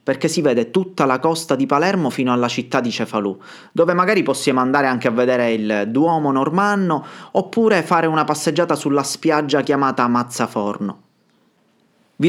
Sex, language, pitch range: male, Italian, 120-165 Hz